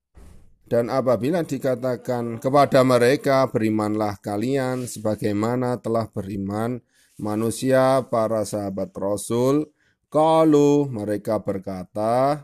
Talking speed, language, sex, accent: 80 wpm, Indonesian, male, native